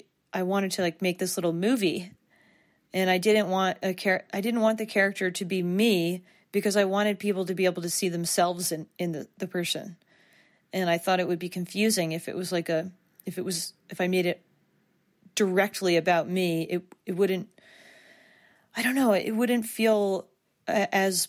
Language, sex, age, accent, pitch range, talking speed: English, female, 30-49, American, 175-205 Hz, 195 wpm